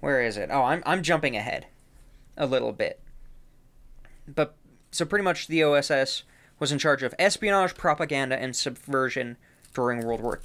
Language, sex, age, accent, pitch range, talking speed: English, male, 20-39, American, 130-160 Hz, 160 wpm